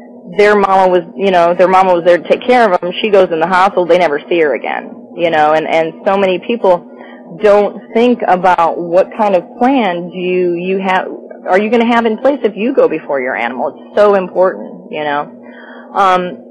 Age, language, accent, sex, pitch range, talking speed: 30-49, English, American, female, 165-205 Hz, 220 wpm